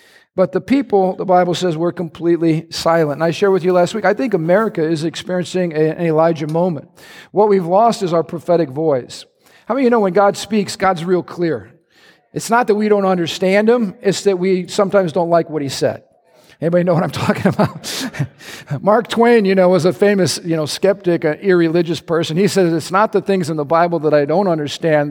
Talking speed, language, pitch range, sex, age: 215 wpm, English, 165-200 Hz, male, 50-69